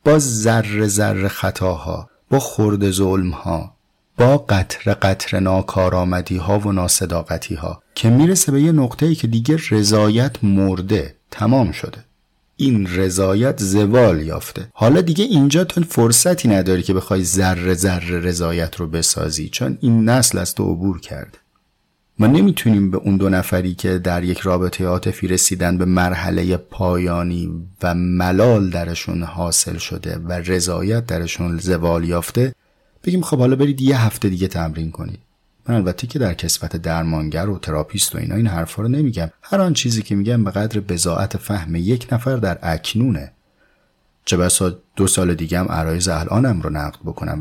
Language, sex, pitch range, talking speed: Persian, male, 90-115 Hz, 150 wpm